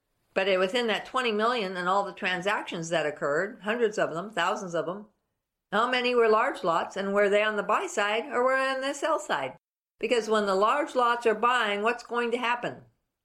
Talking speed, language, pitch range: 210 wpm, English, 185-240 Hz